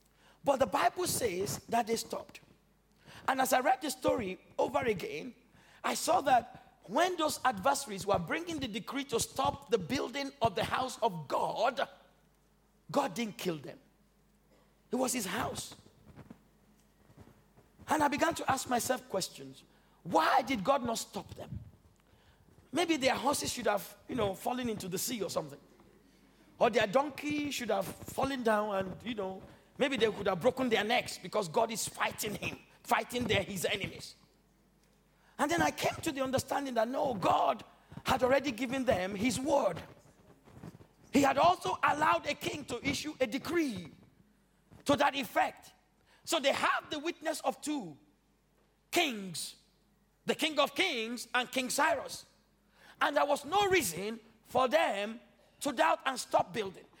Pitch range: 220-285 Hz